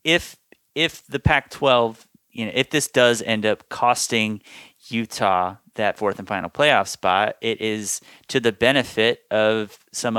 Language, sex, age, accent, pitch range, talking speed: English, male, 30-49, American, 105-130 Hz, 160 wpm